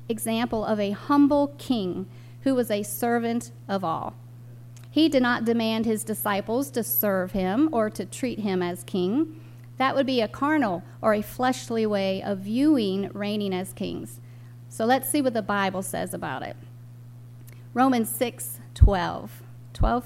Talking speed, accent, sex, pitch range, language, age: 160 wpm, American, female, 170-250 Hz, English, 40-59